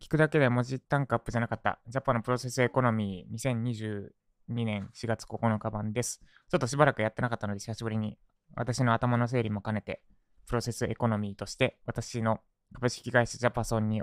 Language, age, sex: Japanese, 20-39, male